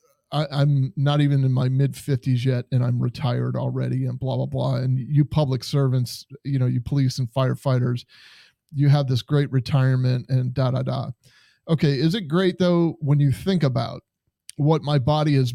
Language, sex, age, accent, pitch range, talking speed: English, male, 30-49, American, 125-145 Hz, 180 wpm